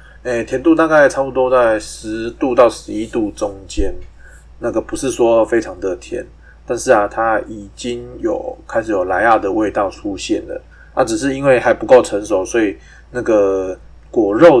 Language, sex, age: Chinese, male, 20-39